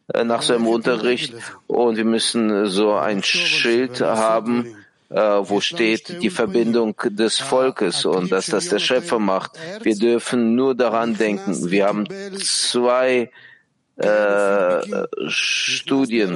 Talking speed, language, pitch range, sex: 115 wpm, German, 105-135 Hz, male